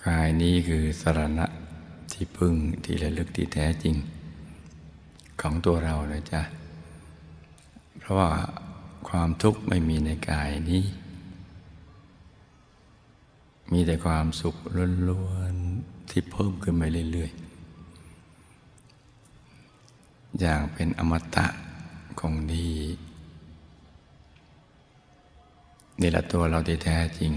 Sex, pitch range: male, 75-85 Hz